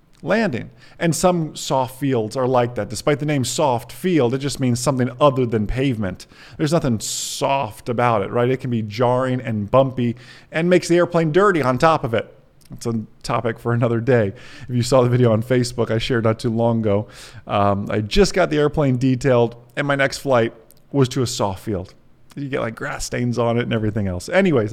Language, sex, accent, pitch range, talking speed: English, male, American, 120-165 Hz, 210 wpm